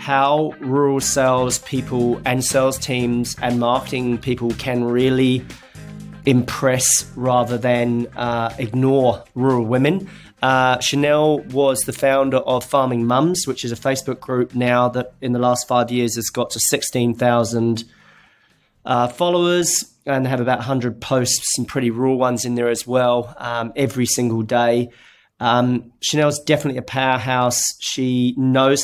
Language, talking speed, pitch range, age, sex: English, 140 wpm, 120-130 Hz, 30-49, male